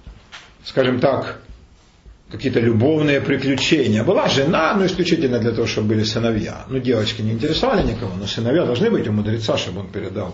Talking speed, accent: 170 wpm, native